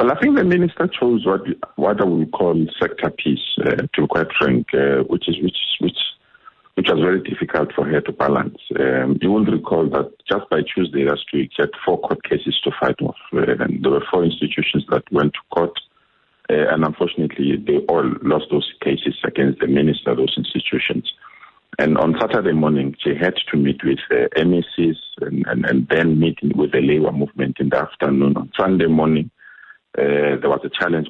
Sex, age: male, 50-69